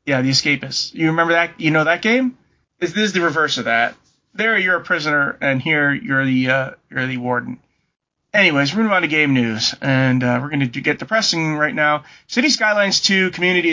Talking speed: 210 wpm